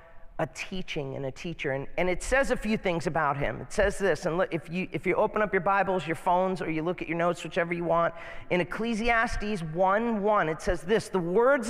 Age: 40-59